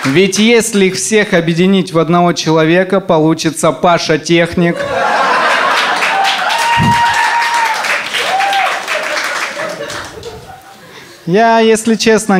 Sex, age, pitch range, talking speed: male, 30-49, 135-180 Hz, 65 wpm